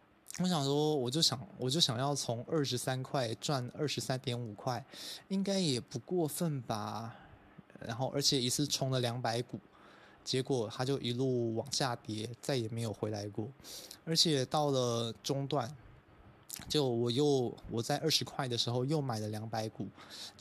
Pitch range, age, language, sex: 115-140 Hz, 20-39, Chinese, male